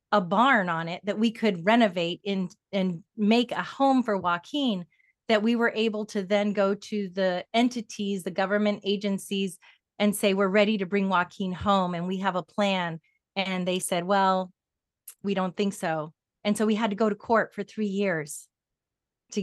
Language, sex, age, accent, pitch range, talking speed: English, female, 30-49, American, 185-225 Hz, 185 wpm